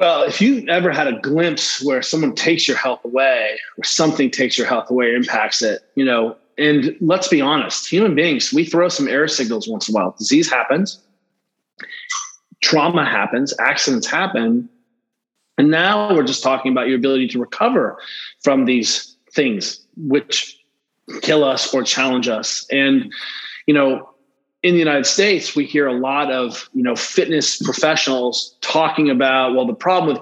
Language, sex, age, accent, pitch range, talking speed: English, male, 30-49, American, 130-185 Hz, 170 wpm